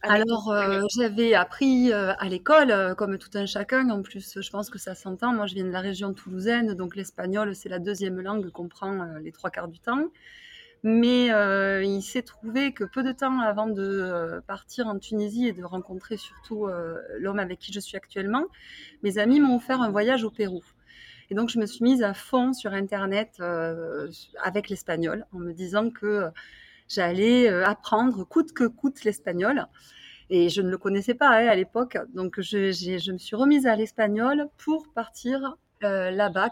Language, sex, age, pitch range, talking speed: French, female, 20-39, 195-245 Hz, 195 wpm